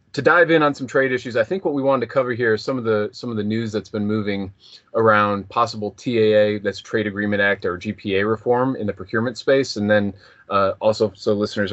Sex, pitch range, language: male, 100-120 Hz, English